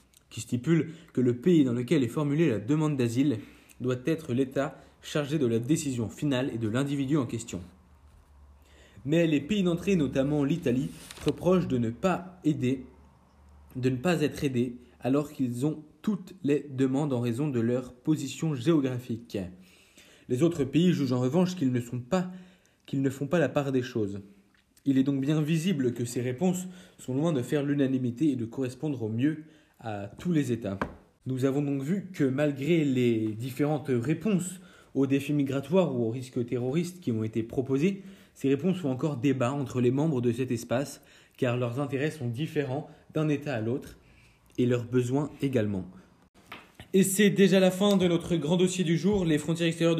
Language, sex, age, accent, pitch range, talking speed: French, male, 20-39, French, 120-155 Hz, 180 wpm